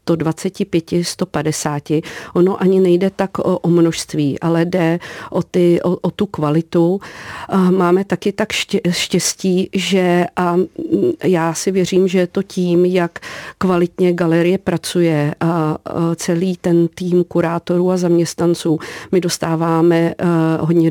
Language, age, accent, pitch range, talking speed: Czech, 50-69, native, 165-180 Hz, 125 wpm